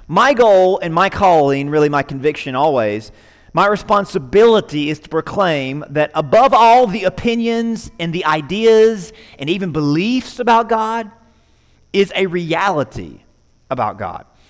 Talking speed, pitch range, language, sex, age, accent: 130 wpm, 190-235 Hz, English, male, 30-49, American